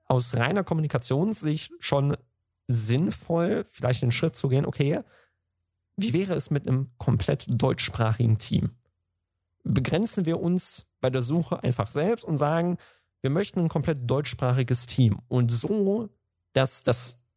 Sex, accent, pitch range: male, German, 115-155 Hz